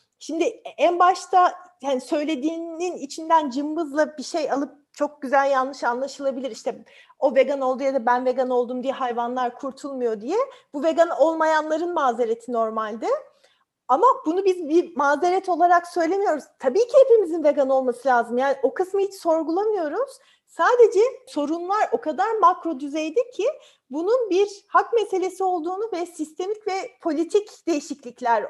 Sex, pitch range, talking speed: female, 250-360 Hz, 140 wpm